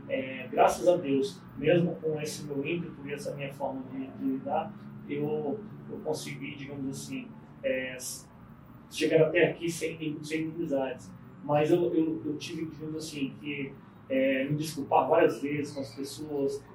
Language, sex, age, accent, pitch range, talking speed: Portuguese, male, 30-49, Brazilian, 140-170 Hz, 160 wpm